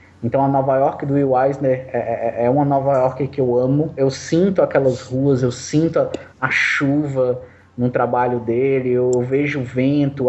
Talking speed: 190 wpm